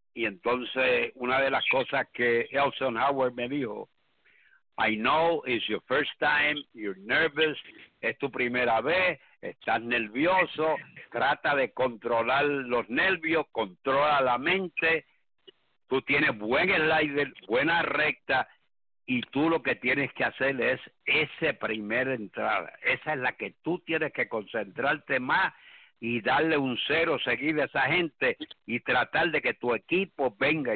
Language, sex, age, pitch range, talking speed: English, male, 60-79, 125-155 Hz, 145 wpm